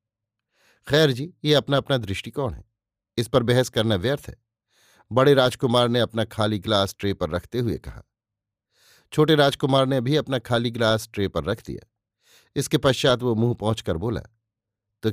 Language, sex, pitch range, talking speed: Hindi, male, 110-135 Hz, 165 wpm